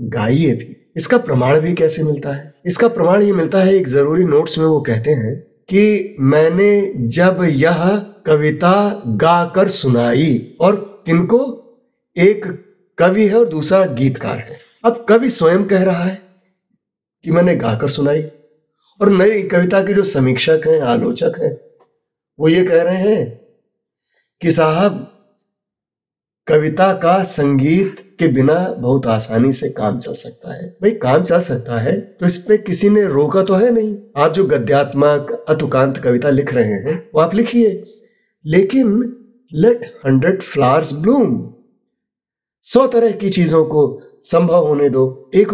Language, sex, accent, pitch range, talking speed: Hindi, male, native, 145-205 Hz, 145 wpm